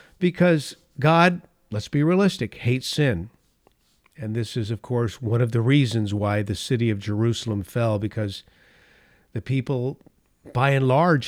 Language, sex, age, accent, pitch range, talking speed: English, male, 50-69, American, 110-145 Hz, 150 wpm